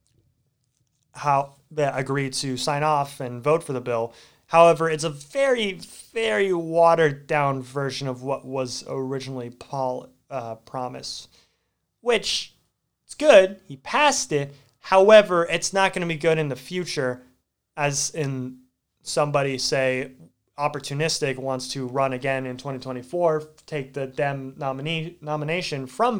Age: 30-49